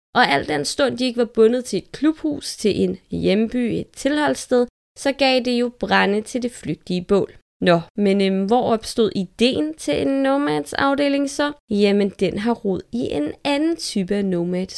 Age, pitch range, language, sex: 20-39, 195-250 Hz, English, female